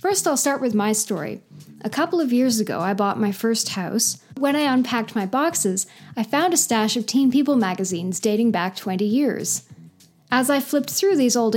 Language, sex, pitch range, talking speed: English, female, 200-275 Hz, 200 wpm